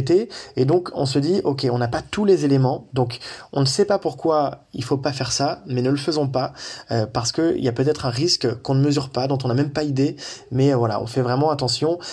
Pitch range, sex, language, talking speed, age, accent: 120-140 Hz, male, French, 255 wpm, 20-39, French